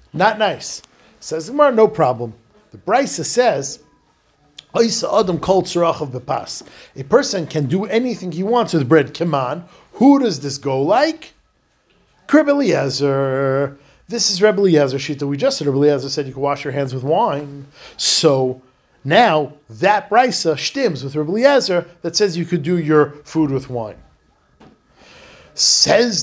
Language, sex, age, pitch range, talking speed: English, male, 50-69, 145-210 Hz, 145 wpm